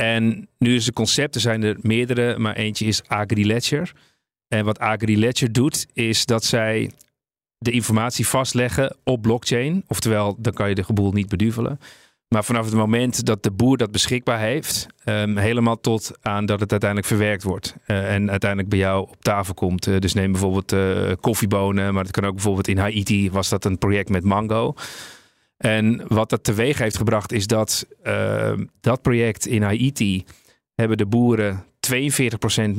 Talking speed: 175 wpm